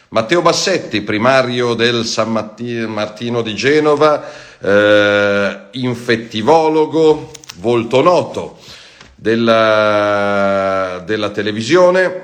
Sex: male